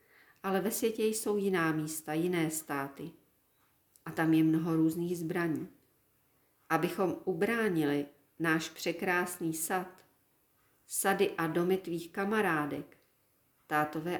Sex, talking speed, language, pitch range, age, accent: female, 105 wpm, Czech, 160-185 Hz, 40-59, native